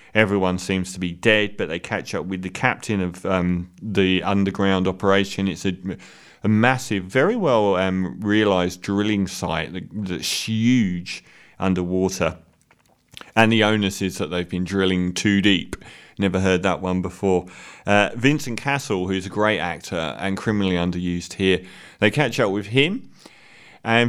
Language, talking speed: English, 155 wpm